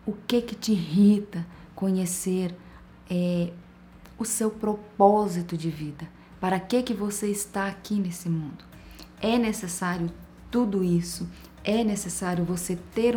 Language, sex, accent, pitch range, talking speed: Portuguese, female, Brazilian, 175-210 Hz, 125 wpm